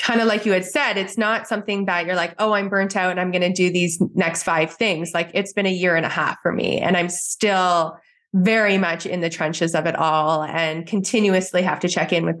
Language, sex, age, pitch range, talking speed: English, female, 20-39, 170-200 Hz, 255 wpm